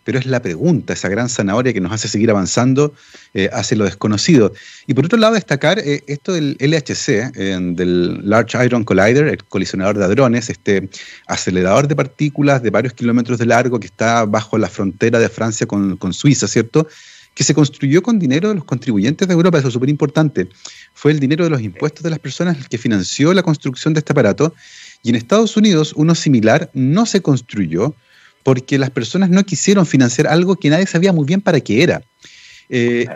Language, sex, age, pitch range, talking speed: Spanish, male, 30-49, 115-160 Hz, 195 wpm